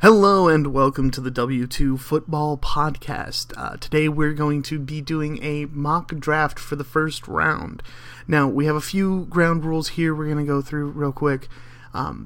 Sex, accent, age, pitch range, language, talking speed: male, American, 30-49, 140-160 Hz, English, 185 wpm